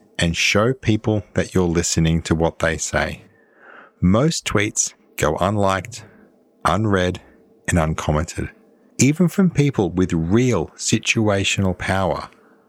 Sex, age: male, 50-69